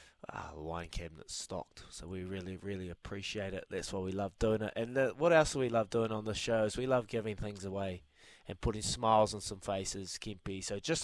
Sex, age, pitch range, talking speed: male, 20-39, 105-130 Hz, 235 wpm